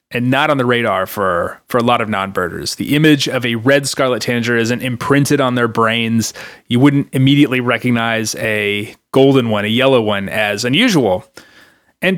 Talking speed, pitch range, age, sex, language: 175 wpm, 110-140 Hz, 30-49, male, English